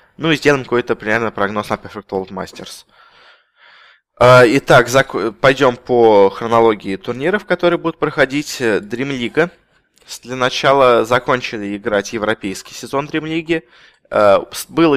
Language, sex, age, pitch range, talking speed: Russian, male, 20-39, 110-140 Hz, 115 wpm